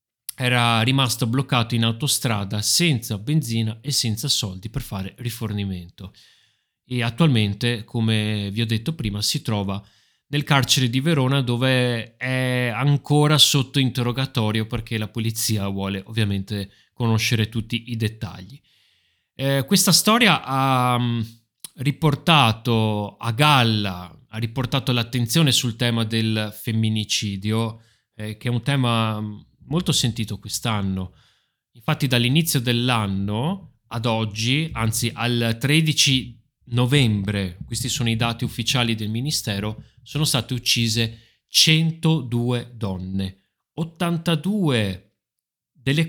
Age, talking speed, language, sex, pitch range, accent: 30-49, 110 wpm, Italian, male, 110-145 Hz, native